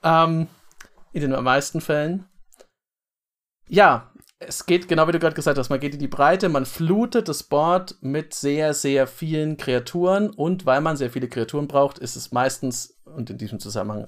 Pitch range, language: 130-165 Hz, German